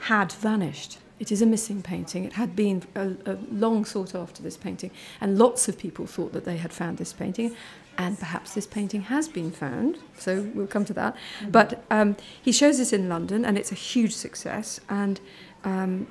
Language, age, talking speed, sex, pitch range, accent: English, 40-59, 200 wpm, female, 185-215 Hz, British